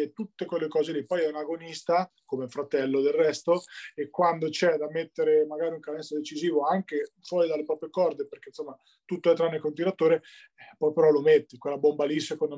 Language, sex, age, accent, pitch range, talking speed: Italian, male, 20-39, native, 155-200 Hz, 200 wpm